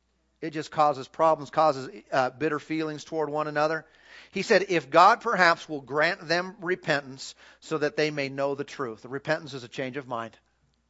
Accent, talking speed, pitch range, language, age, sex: American, 180 wpm, 140-195 Hz, English, 40-59, male